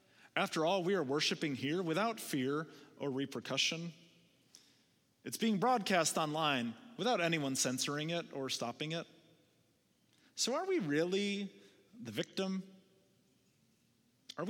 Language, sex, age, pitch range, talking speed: English, male, 30-49, 140-190 Hz, 115 wpm